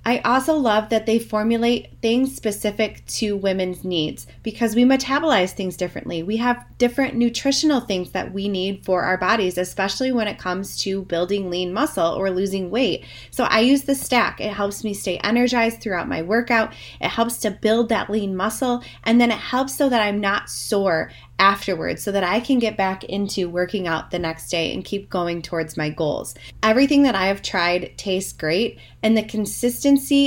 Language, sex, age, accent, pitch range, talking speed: English, female, 20-39, American, 190-235 Hz, 190 wpm